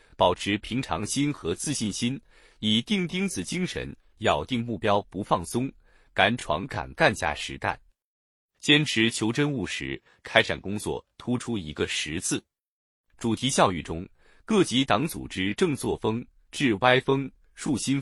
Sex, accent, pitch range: male, native, 95-145 Hz